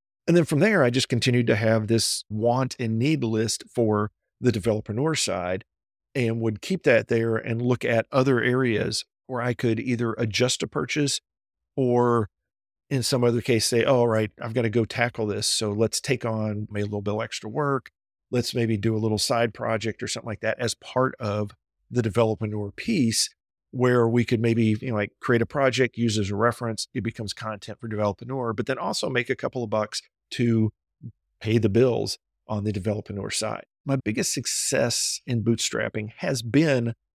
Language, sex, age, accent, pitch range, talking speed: English, male, 50-69, American, 110-125 Hz, 195 wpm